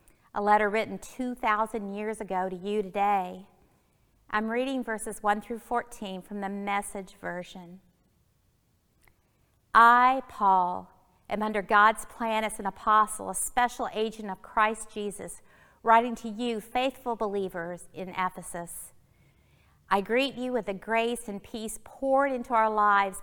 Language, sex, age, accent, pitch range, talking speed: English, female, 50-69, American, 190-230 Hz, 135 wpm